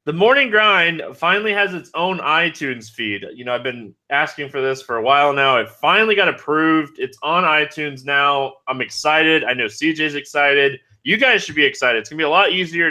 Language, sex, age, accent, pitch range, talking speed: English, male, 20-39, American, 130-180 Hz, 215 wpm